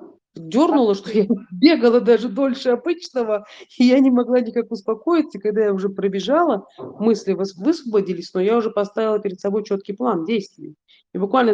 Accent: native